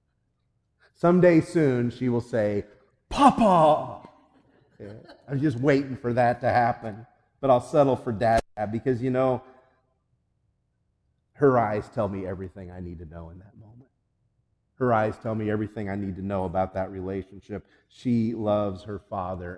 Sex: male